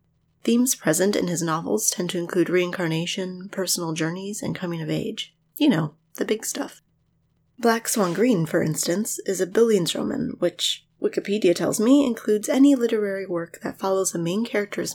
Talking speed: 170 wpm